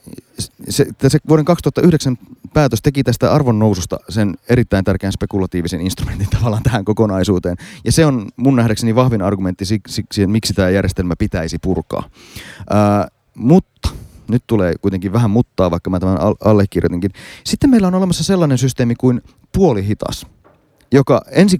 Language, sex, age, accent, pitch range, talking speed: Finnish, male, 30-49, native, 100-135 Hz, 145 wpm